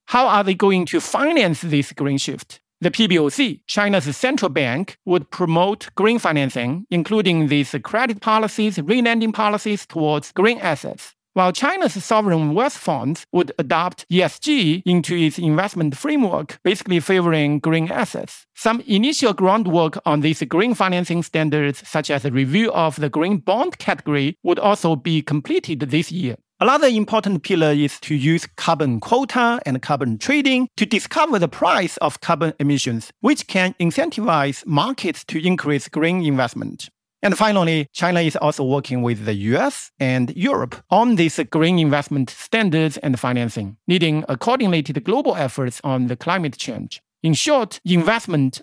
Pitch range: 145-205 Hz